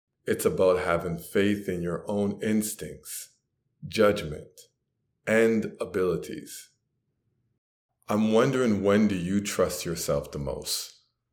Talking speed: 105 wpm